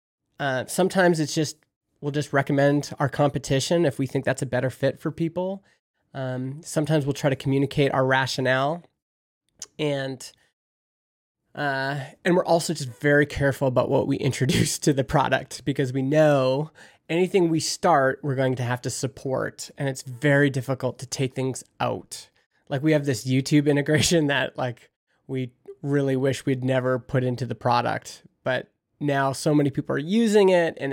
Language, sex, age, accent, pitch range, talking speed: English, male, 20-39, American, 130-155 Hz, 170 wpm